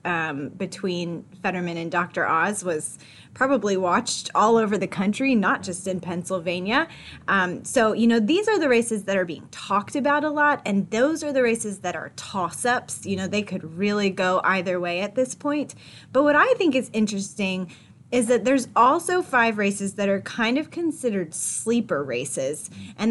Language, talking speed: English, 185 wpm